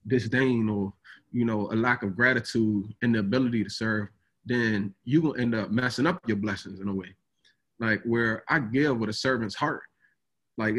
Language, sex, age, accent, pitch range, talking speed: English, male, 20-39, American, 110-130 Hz, 190 wpm